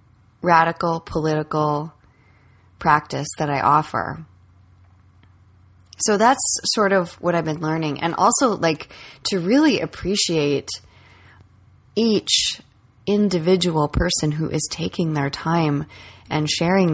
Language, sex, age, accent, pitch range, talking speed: English, female, 20-39, American, 100-165 Hz, 105 wpm